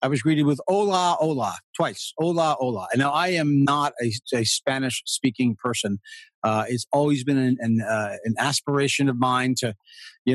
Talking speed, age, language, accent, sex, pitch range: 185 wpm, 40-59, English, American, male, 125-170 Hz